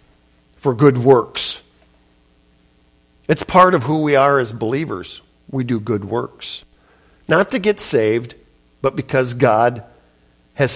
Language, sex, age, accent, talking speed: English, male, 50-69, American, 130 wpm